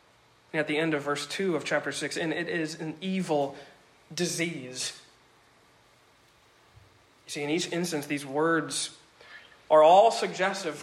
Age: 40-59